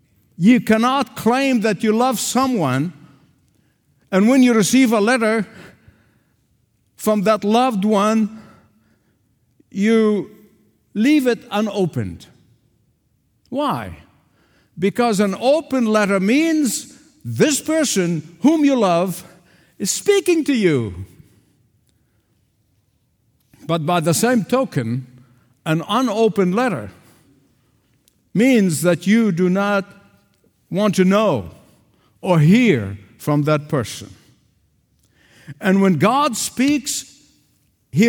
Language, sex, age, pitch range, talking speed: English, male, 50-69, 145-235 Hz, 100 wpm